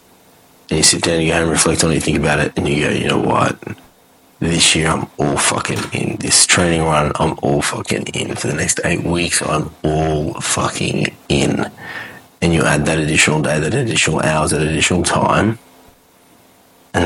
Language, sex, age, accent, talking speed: English, male, 30-49, Australian, 195 wpm